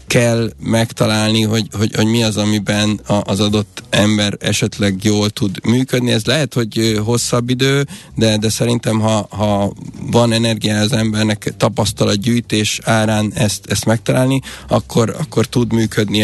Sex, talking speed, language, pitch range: male, 145 wpm, Hungarian, 105-120 Hz